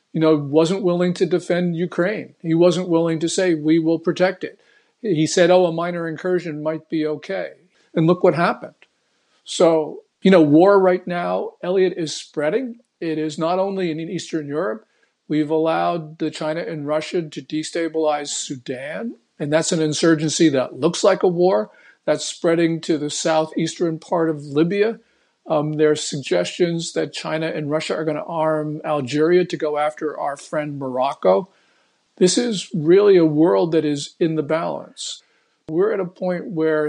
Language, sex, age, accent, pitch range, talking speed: English, male, 50-69, American, 155-185 Hz, 170 wpm